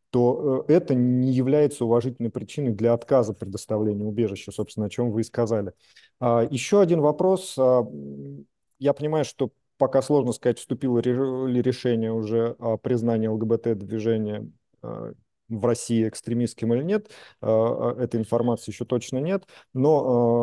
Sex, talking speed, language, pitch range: male, 125 wpm, Russian, 115-130 Hz